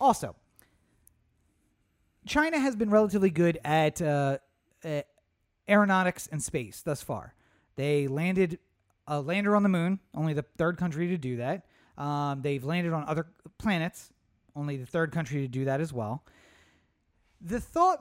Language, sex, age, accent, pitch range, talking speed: English, male, 30-49, American, 145-215 Hz, 150 wpm